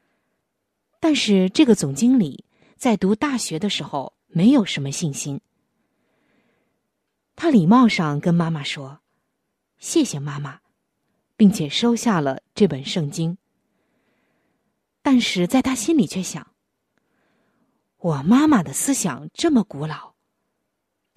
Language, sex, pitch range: Chinese, female, 155-240 Hz